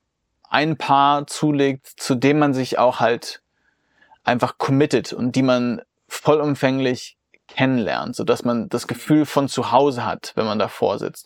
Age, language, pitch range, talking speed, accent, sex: 30-49, German, 125-145 Hz, 150 wpm, German, male